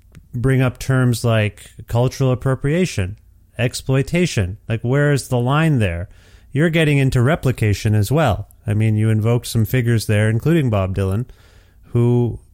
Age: 30-49